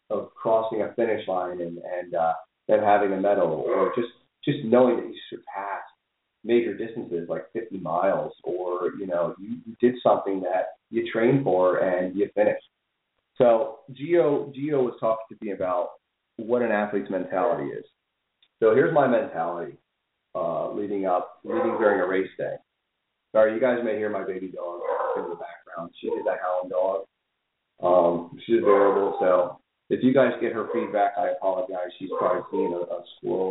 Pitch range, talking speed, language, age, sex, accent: 95-125 Hz, 170 wpm, English, 30-49, male, American